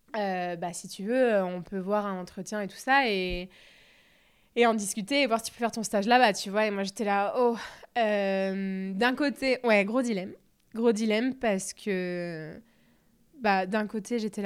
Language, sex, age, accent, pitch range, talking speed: French, female, 20-39, French, 195-230 Hz, 195 wpm